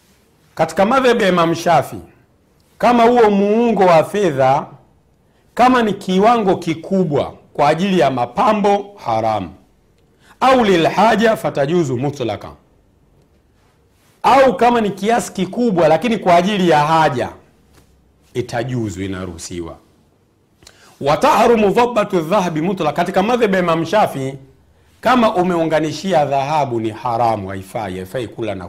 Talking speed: 110 wpm